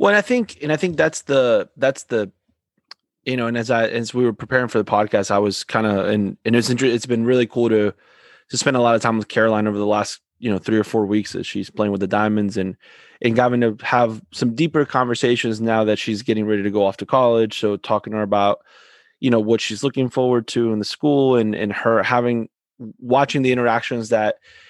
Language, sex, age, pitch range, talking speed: English, male, 20-39, 105-130 Hz, 240 wpm